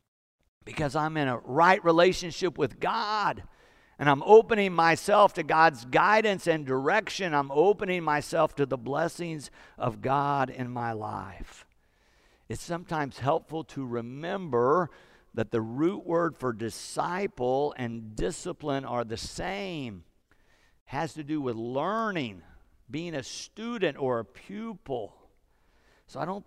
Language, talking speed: English, 130 wpm